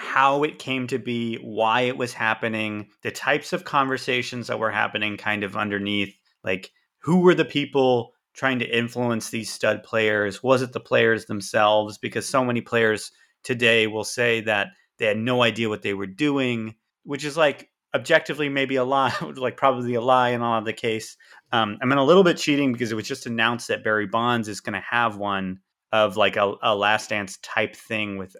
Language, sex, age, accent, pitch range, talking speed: English, male, 30-49, American, 105-130 Hz, 205 wpm